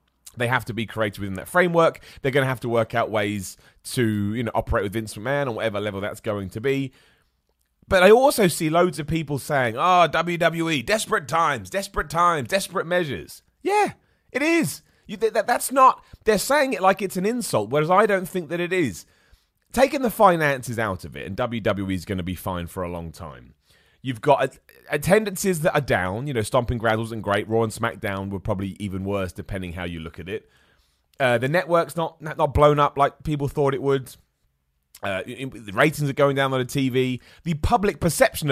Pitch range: 100-170 Hz